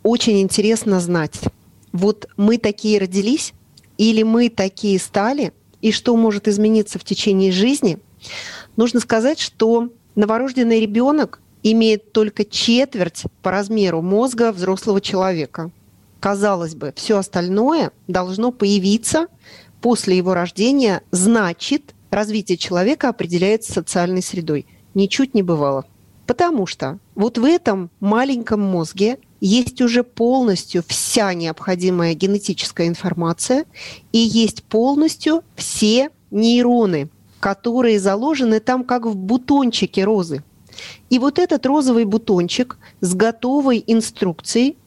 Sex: female